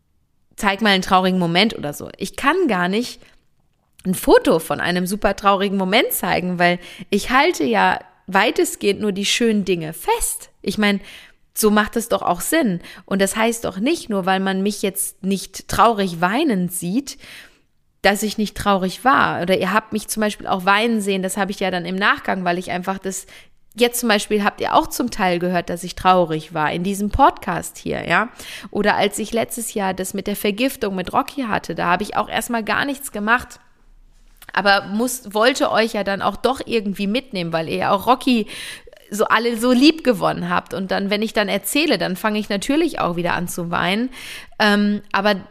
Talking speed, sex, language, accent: 200 wpm, female, German, German